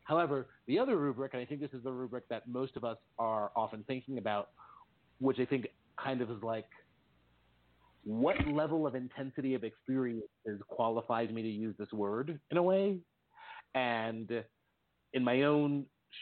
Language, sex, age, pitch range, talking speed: English, male, 40-59, 110-135 Hz, 165 wpm